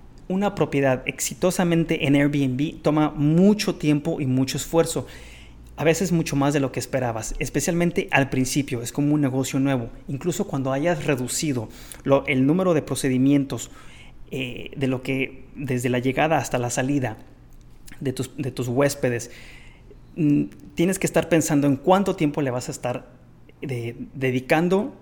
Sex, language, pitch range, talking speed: male, Spanish, 125-155 Hz, 140 wpm